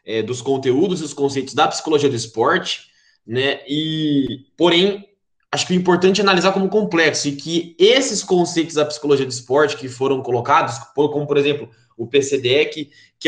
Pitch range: 140-180 Hz